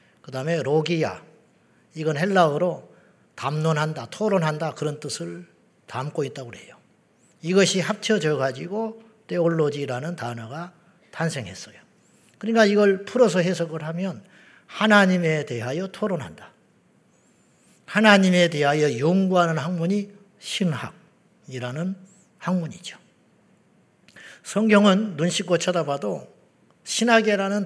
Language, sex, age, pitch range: Korean, male, 40-59, 165-205 Hz